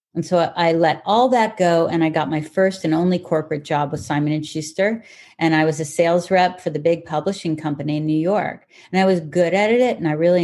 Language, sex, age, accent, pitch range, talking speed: English, female, 40-59, American, 155-180 Hz, 240 wpm